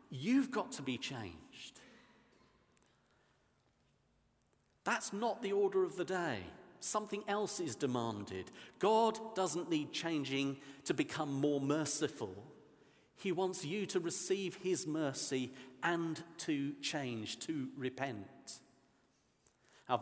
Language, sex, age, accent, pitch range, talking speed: English, male, 50-69, British, 130-185 Hz, 110 wpm